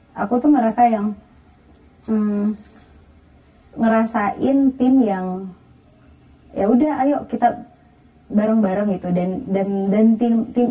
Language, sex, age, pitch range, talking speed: Indonesian, female, 20-39, 190-230 Hz, 105 wpm